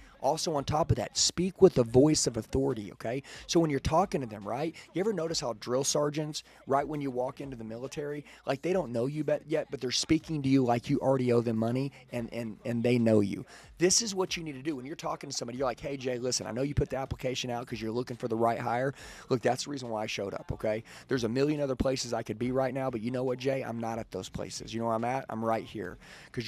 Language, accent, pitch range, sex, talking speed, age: English, American, 115-145 Hz, male, 280 wpm, 30-49